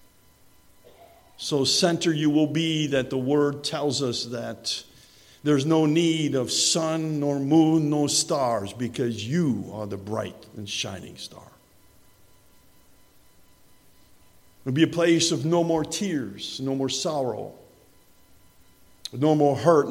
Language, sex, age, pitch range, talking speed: English, male, 50-69, 105-145 Hz, 130 wpm